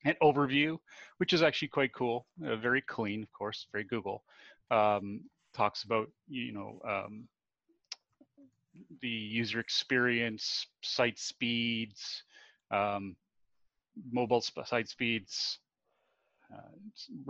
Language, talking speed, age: English, 105 wpm, 30-49